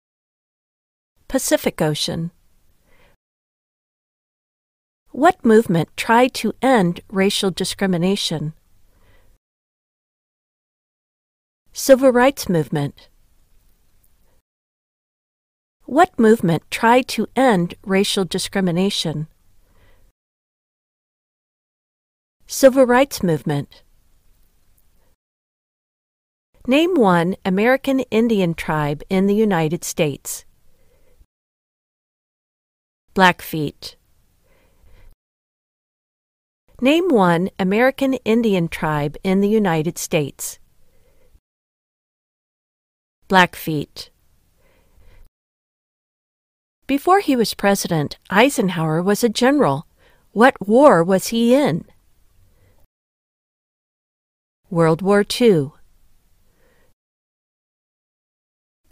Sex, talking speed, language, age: female, 60 wpm, English, 40-59